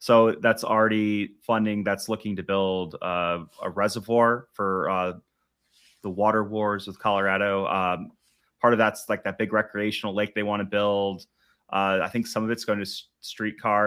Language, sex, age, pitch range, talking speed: English, male, 30-49, 95-110 Hz, 170 wpm